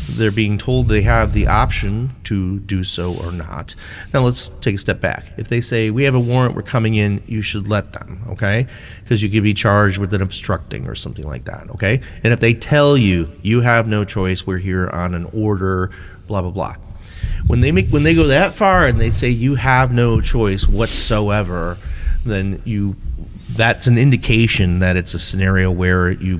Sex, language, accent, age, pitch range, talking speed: male, English, American, 40-59, 95-125 Hz, 205 wpm